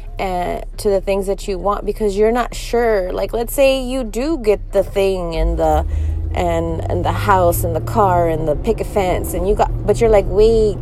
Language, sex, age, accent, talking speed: English, female, 20-39, American, 215 wpm